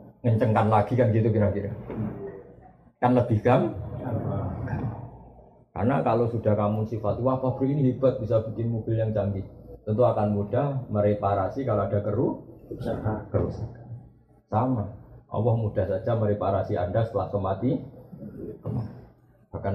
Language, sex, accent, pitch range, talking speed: Indonesian, male, native, 100-125 Hz, 120 wpm